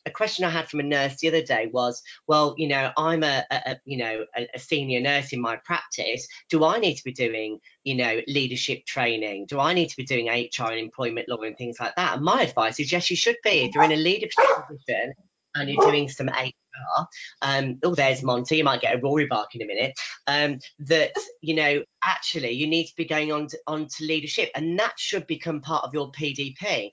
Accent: British